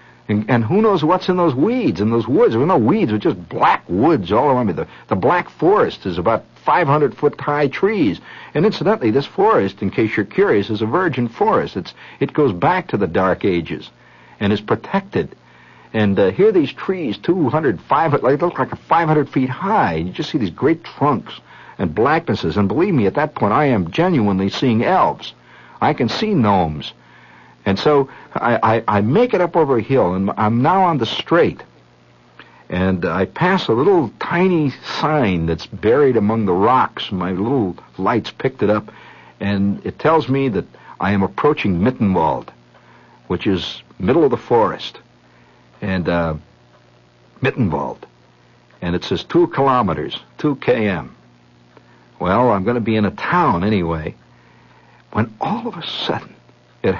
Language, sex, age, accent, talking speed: English, male, 60-79, American, 175 wpm